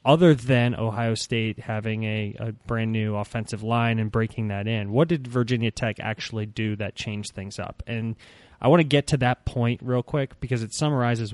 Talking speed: 200 wpm